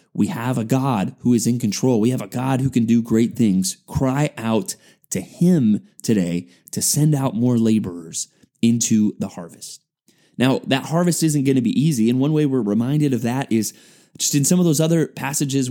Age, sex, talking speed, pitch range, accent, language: 20-39, male, 200 wpm, 125-160 Hz, American, English